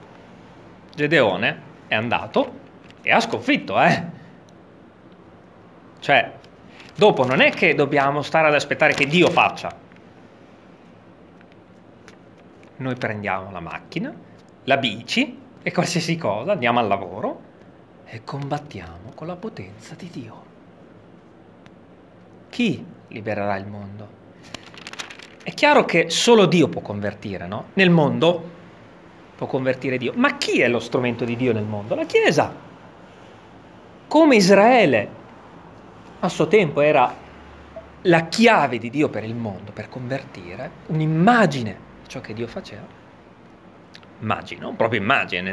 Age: 30-49